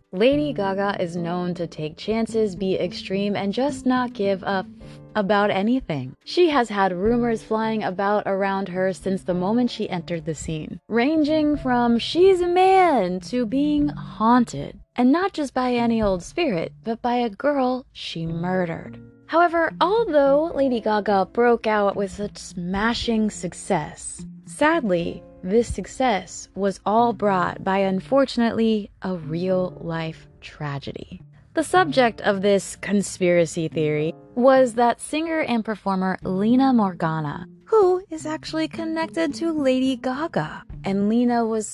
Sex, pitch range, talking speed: female, 180-255 Hz, 140 wpm